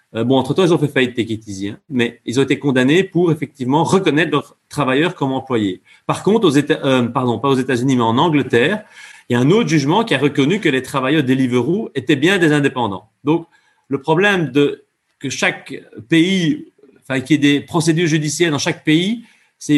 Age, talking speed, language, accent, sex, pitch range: 30-49, 200 wpm, French, French, male, 125-165 Hz